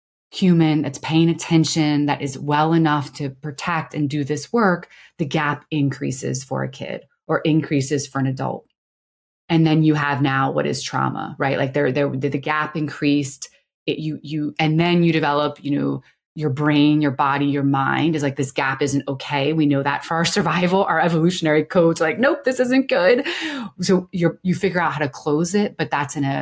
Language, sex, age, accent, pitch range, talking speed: English, female, 20-39, American, 140-165 Hz, 200 wpm